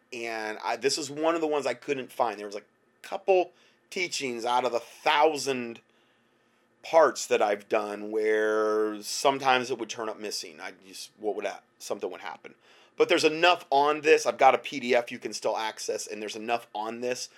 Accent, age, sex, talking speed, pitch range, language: American, 30-49, male, 195 wpm, 120-155 Hz, English